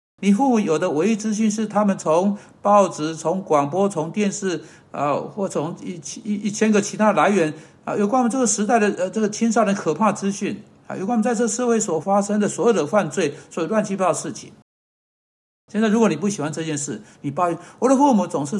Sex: male